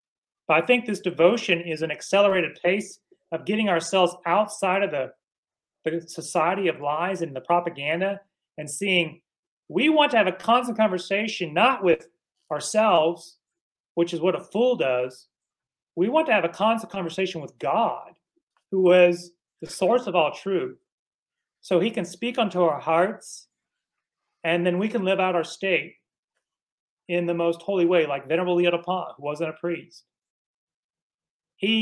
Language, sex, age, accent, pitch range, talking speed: English, male, 30-49, American, 165-210 Hz, 160 wpm